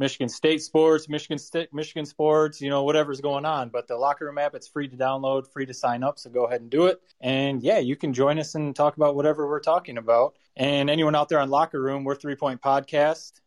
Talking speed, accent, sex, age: 245 wpm, American, male, 20-39